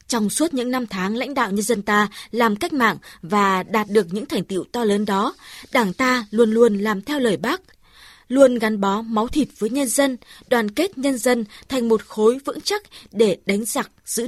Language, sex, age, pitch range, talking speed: Vietnamese, female, 20-39, 195-265 Hz, 215 wpm